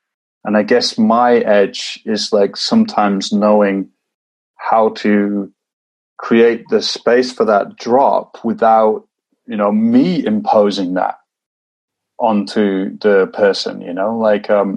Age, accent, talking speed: 30-49, British, 120 wpm